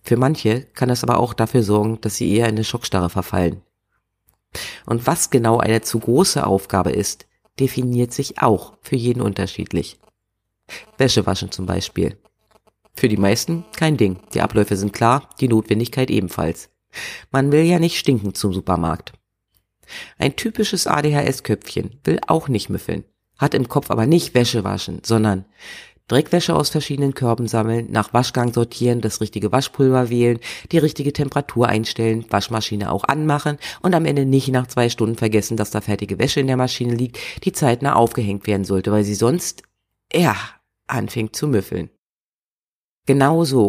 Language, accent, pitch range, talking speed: German, German, 105-135 Hz, 160 wpm